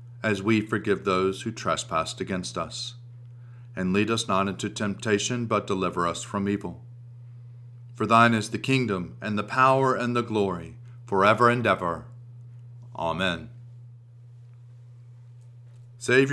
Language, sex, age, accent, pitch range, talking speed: English, male, 40-59, American, 105-120 Hz, 130 wpm